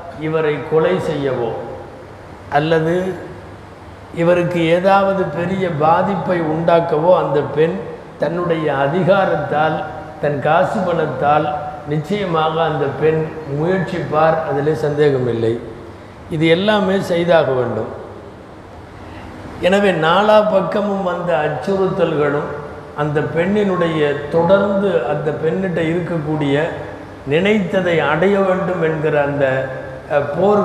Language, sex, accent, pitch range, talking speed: Tamil, male, native, 145-180 Hz, 85 wpm